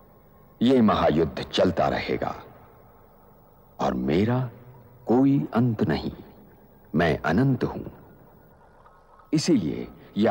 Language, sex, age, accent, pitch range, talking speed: Hindi, male, 60-79, native, 95-130 Hz, 75 wpm